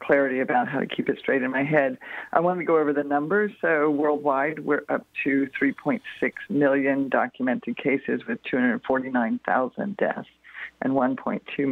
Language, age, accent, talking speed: English, 50-69, American, 160 wpm